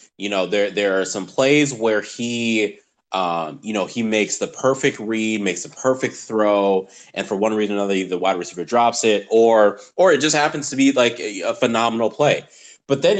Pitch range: 100-130 Hz